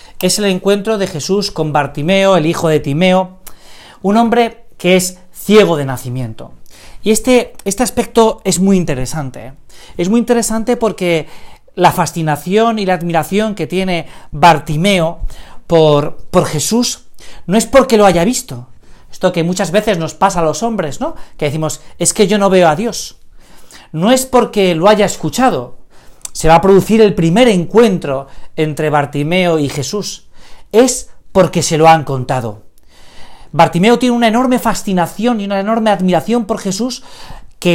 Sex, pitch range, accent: male, 160-225 Hz, Spanish